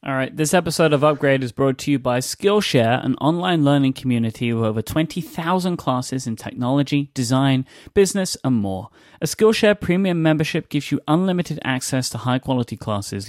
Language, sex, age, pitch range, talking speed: English, male, 30-49, 115-150 Hz, 165 wpm